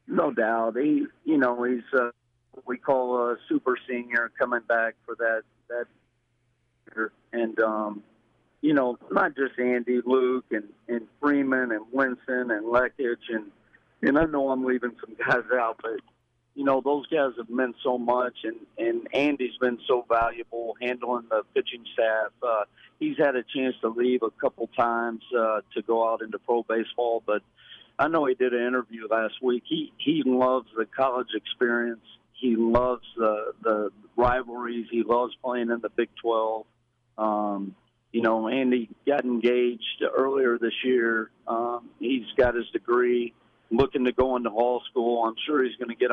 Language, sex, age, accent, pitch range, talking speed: English, male, 50-69, American, 115-125 Hz, 170 wpm